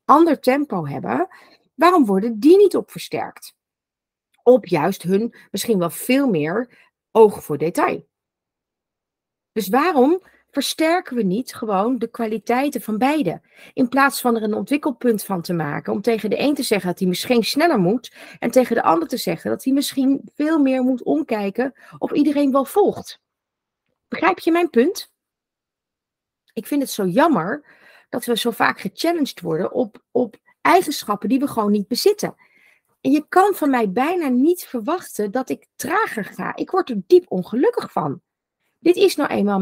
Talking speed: 170 wpm